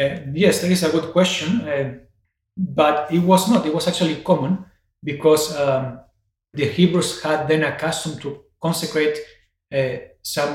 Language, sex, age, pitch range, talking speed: English, male, 30-49, 130-155 Hz, 160 wpm